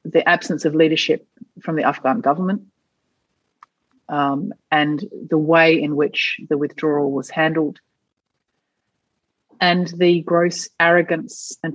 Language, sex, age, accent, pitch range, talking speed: English, female, 30-49, Australian, 150-175 Hz, 115 wpm